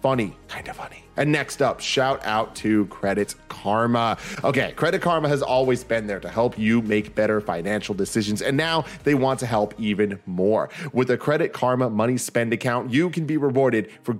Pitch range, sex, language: 105-140 Hz, male, English